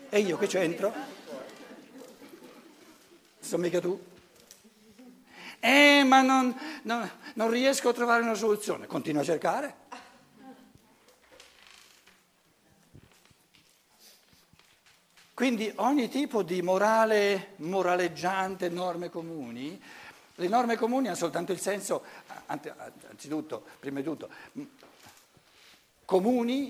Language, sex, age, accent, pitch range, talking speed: Italian, male, 60-79, native, 170-245 Hz, 90 wpm